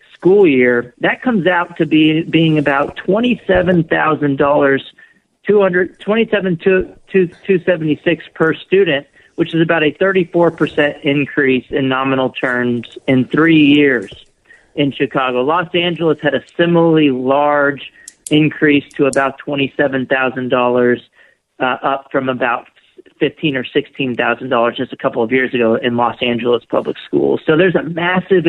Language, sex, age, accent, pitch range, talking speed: English, male, 40-59, American, 130-160 Hz, 135 wpm